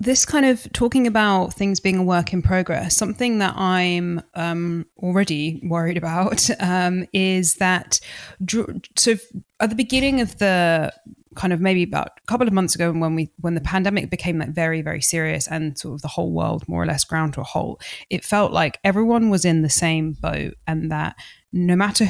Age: 20-39